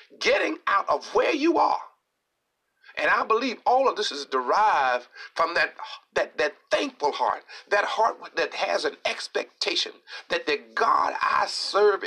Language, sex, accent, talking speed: English, male, American, 155 wpm